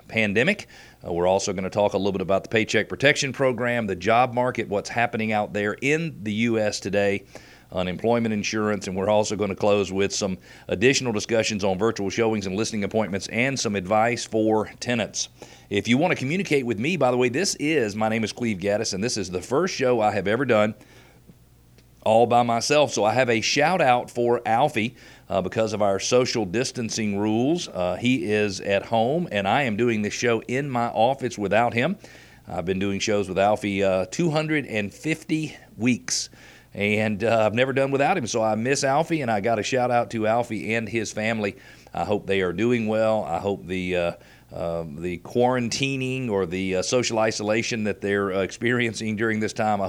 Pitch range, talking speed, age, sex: 100-120 Hz, 200 wpm, 40-59, male